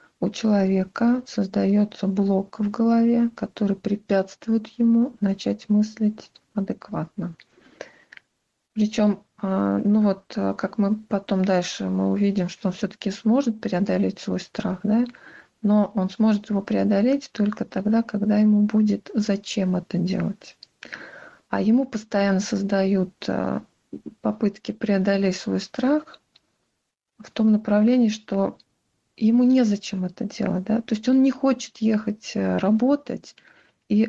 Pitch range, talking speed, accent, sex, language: 200-230 Hz, 120 wpm, native, female, Russian